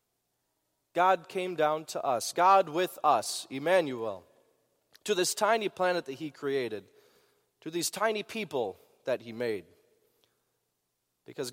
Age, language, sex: 30-49, English, male